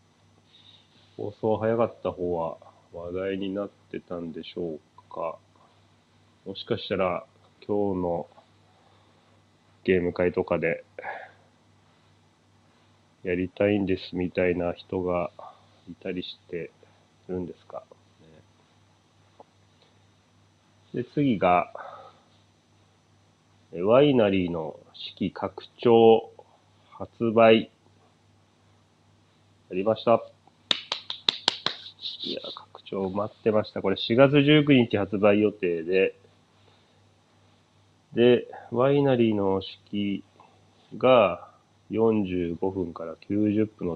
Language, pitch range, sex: Japanese, 90-110 Hz, male